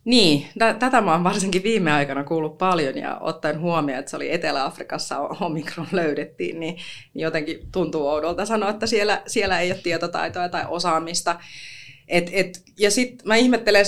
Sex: female